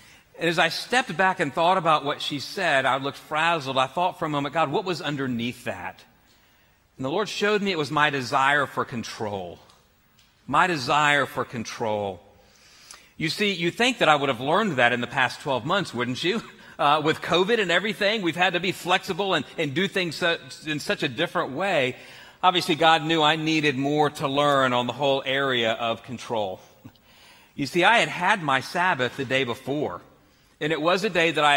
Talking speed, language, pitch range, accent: 200 wpm, English, 130-175 Hz, American